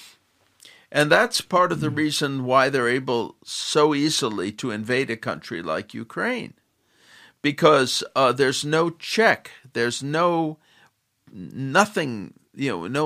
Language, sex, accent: English, male, American